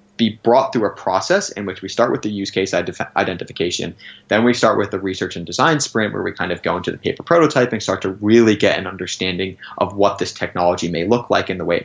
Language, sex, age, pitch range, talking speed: English, male, 20-39, 95-115 Hz, 250 wpm